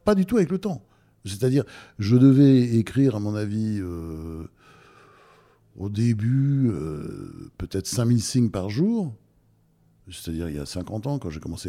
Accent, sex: French, male